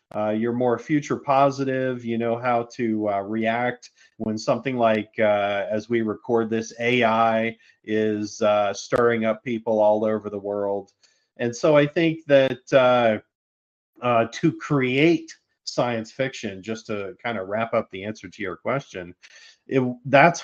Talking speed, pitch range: 155 wpm, 105-125 Hz